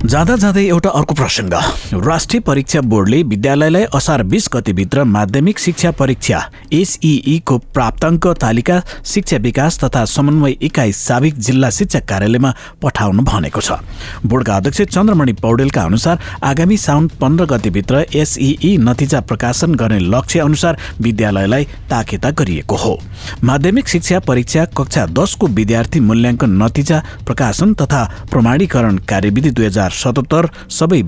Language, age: English, 60-79